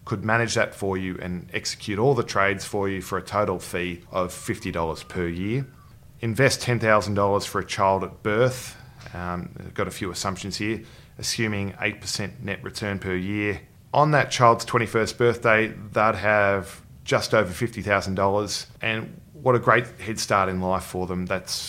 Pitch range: 90-110 Hz